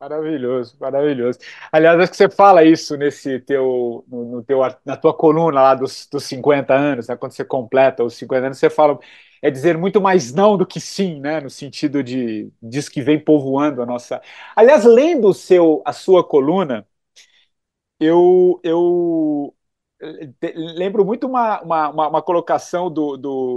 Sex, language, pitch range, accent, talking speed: male, Portuguese, 145-210 Hz, Brazilian, 170 wpm